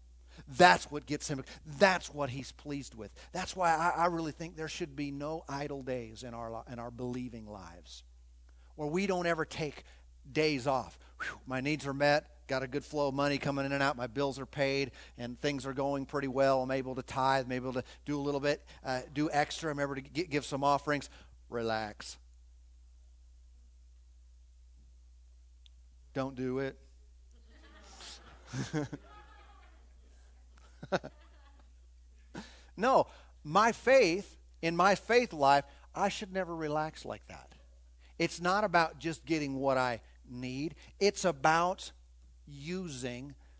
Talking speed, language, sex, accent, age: 145 wpm, English, male, American, 50-69